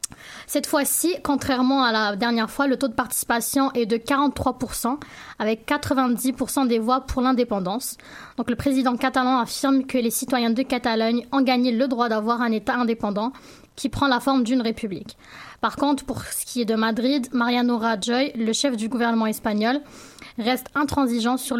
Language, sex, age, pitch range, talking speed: French, female, 20-39, 230-270 Hz, 170 wpm